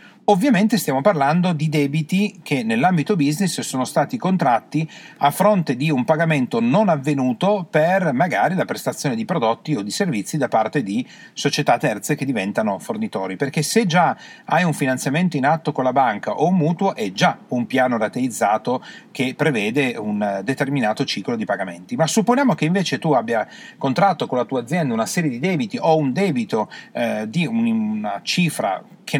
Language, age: Italian, 40-59